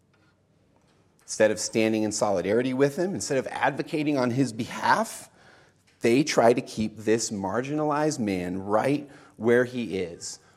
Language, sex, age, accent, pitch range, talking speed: English, male, 30-49, American, 105-140 Hz, 135 wpm